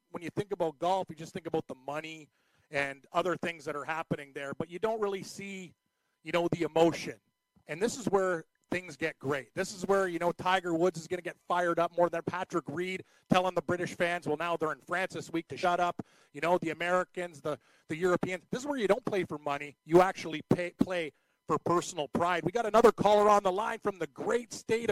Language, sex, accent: English, male, American